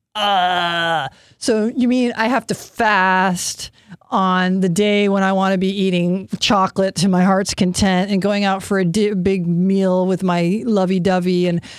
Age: 40-59